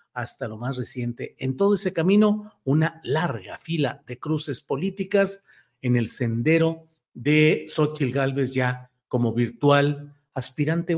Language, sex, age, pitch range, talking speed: Spanish, male, 50-69, 130-175 Hz, 130 wpm